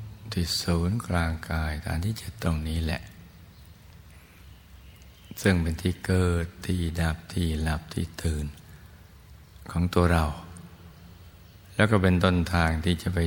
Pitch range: 80-90 Hz